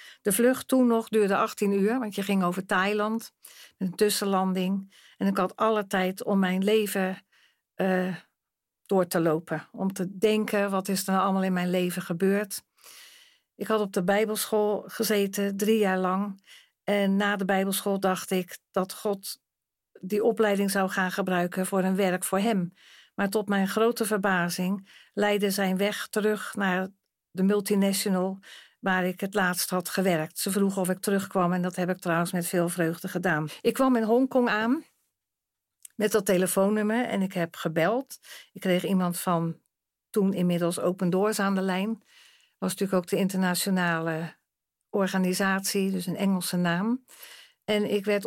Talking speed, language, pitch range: 165 wpm, Dutch, 185-210 Hz